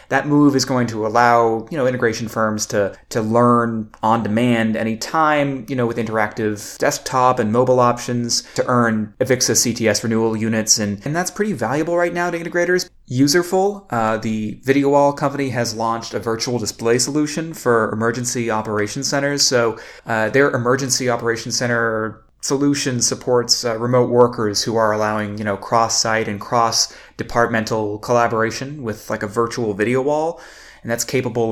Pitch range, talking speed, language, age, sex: 110-130 Hz, 160 wpm, English, 20-39, male